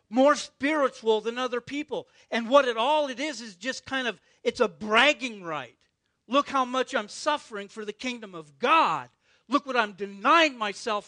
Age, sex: 50-69, male